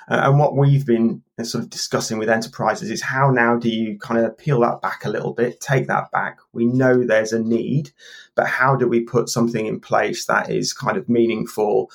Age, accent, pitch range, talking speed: 30-49, British, 115-140 Hz, 215 wpm